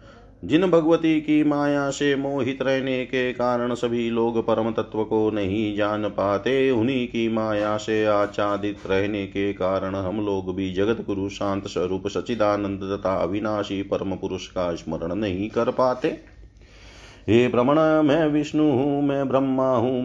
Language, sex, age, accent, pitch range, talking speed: Hindi, male, 40-59, native, 100-125 Hz, 150 wpm